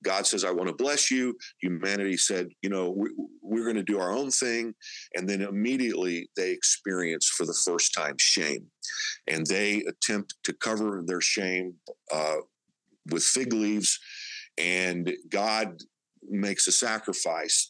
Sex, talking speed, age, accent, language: male, 155 wpm, 50-69, American, English